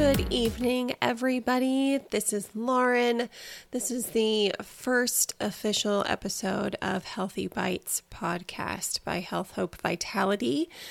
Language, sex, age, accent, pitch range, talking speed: English, female, 20-39, American, 205-270 Hz, 110 wpm